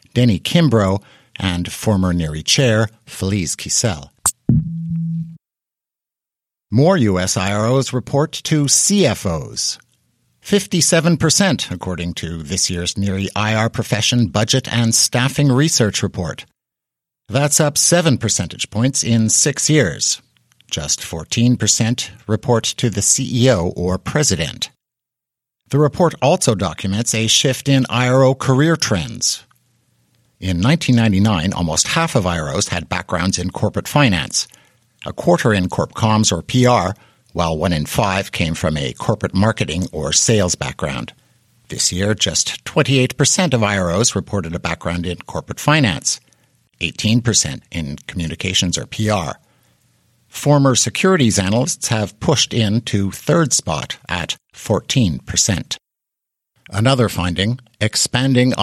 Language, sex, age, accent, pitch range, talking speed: English, male, 50-69, American, 95-130 Hz, 115 wpm